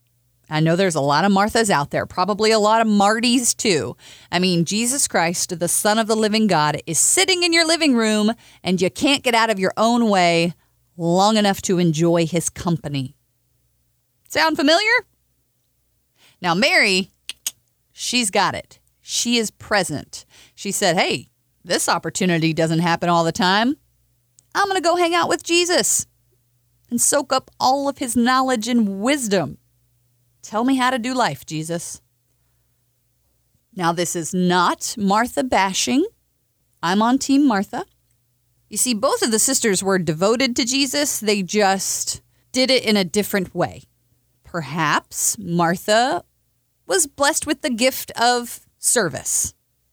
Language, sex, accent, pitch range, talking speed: English, female, American, 150-235 Hz, 155 wpm